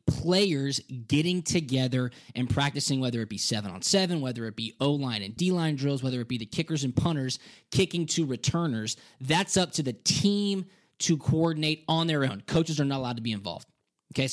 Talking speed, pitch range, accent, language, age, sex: 185 wpm, 120-160 Hz, American, English, 20-39, male